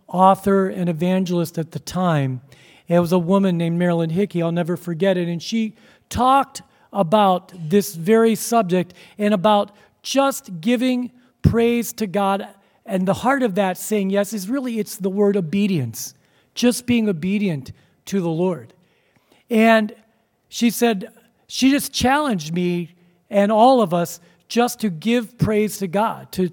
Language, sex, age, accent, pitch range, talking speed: English, male, 40-59, American, 180-230 Hz, 150 wpm